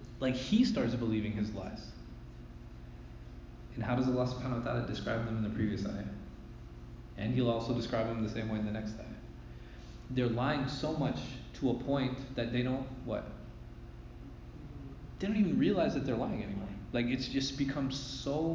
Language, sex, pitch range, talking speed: English, male, 100-120 Hz, 180 wpm